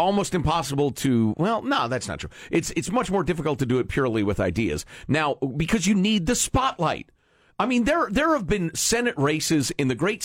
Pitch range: 135-225 Hz